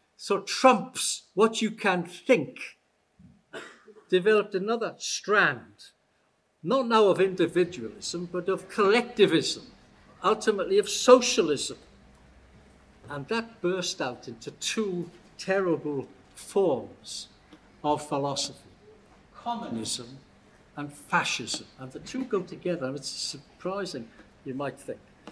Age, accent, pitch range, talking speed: 60-79, British, 140-195 Hz, 100 wpm